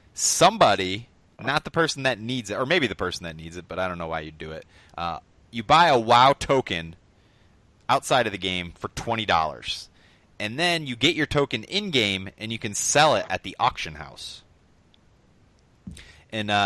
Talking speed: 185 wpm